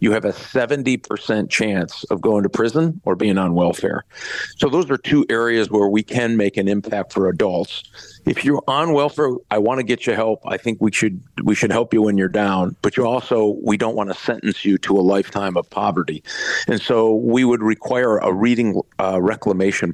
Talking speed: 210 wpm